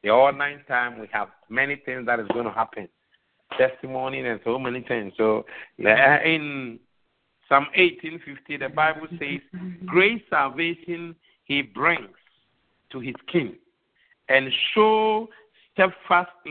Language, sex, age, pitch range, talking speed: English, male, 50-69, 140-180 Hz, 125 wpm